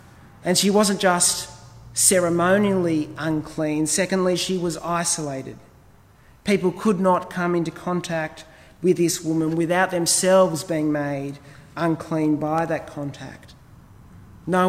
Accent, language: Australian, English